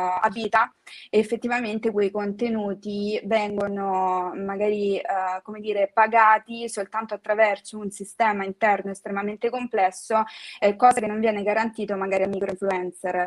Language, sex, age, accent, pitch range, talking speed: Italian, female, 20-39, native, 195-225 Hz, 125 wpm